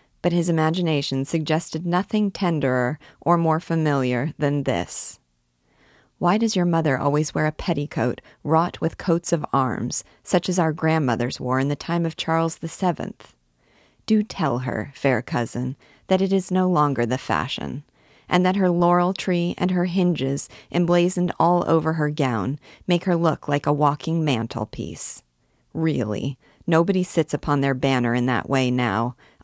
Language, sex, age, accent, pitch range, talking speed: English, female, 40-59, American, 135-170 Hz, 160 wpm